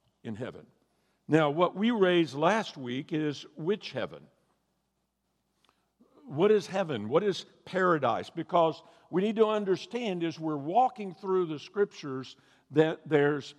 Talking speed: 135 wpm